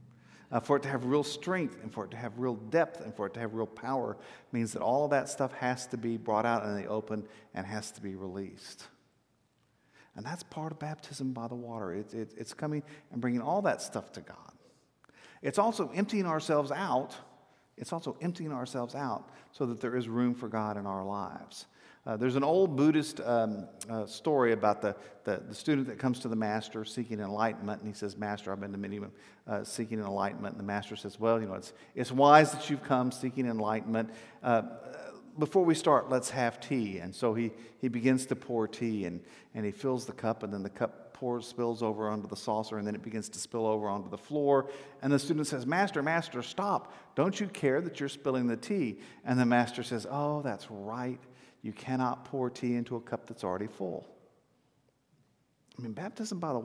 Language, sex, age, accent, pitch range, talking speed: English, male, 50-69, American, 110-140 Hz, 215 wpm